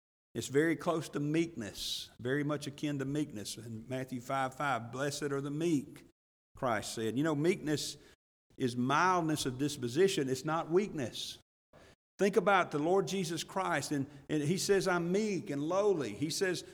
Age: 50-69